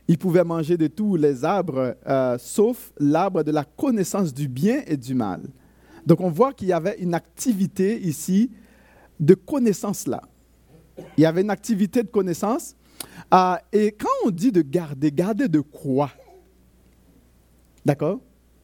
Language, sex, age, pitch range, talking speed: French, male, 50-69, 160-220 Hz, 155 wpm